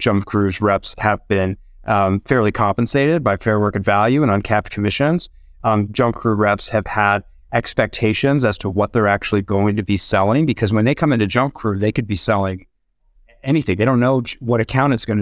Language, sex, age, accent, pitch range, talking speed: English, male, 30-49, American, 95-115 Hz, 200 wpm